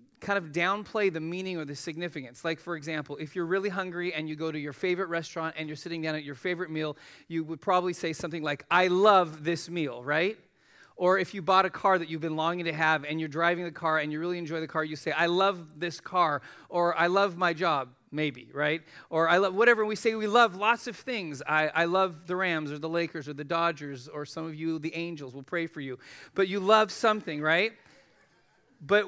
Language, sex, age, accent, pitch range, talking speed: English, male, 40-59, American, 155-190 Hz, 240 wpm